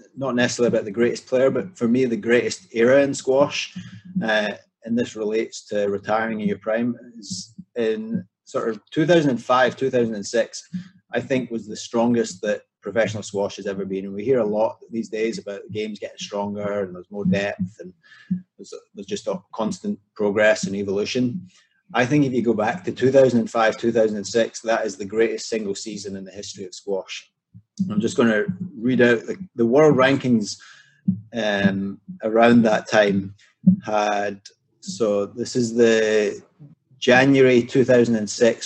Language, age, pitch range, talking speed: English, 30-49, 110-130 Hz, 165 wpm